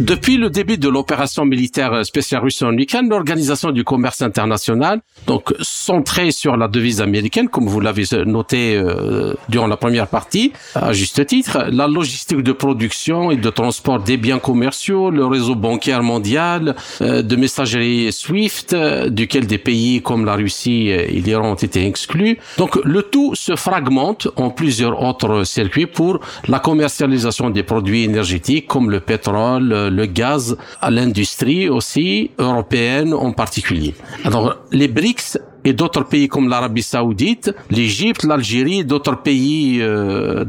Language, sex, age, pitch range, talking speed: French, male, 50-69, 115-155 Hz, 150 wpm